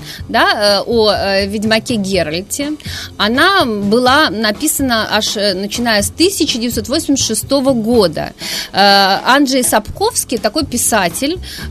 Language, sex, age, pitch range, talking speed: Russian, female, 30-49, 195-255 Hz, 75 wpm